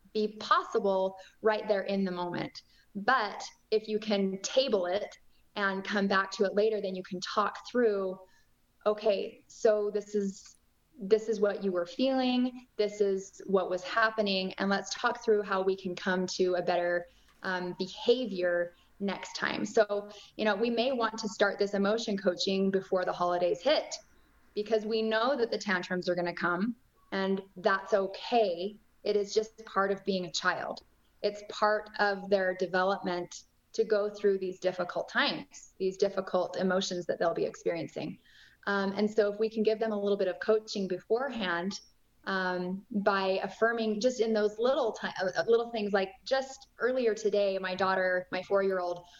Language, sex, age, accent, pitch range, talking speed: English, female, 20-39, American, 190-220 Hz, 170 wpm